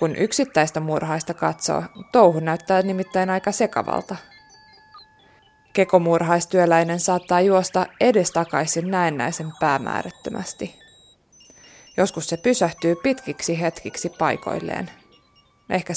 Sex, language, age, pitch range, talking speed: female, Finnish, 20-39, 170-225 Hz, 85 wpm